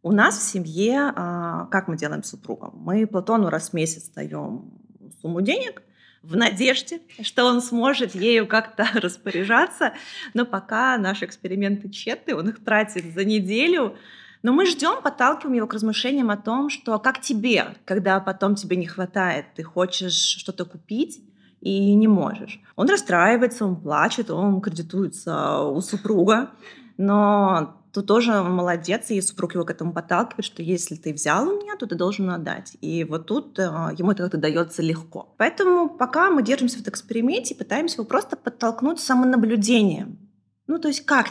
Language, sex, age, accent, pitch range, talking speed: Russian, female, 20-39, native, 185-245 Hz, 165 wpm